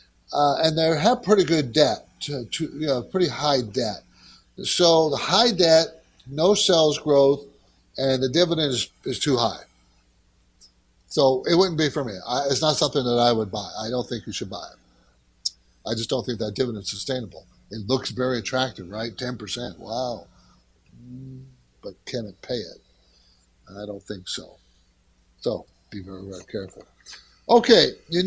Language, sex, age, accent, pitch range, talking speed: English, male, 60-79, American, 120-180 Hz, 160 wpm